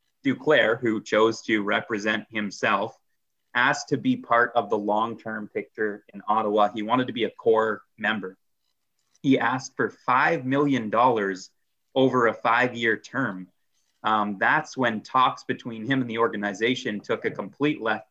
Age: 30-49